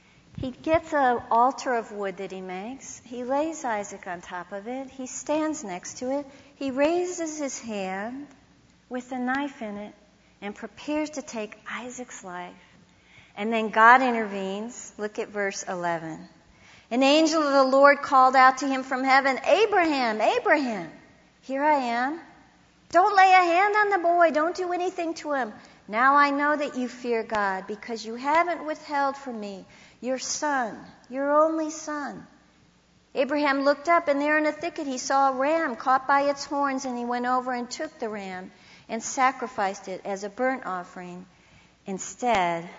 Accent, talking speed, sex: American, 170 wpm, female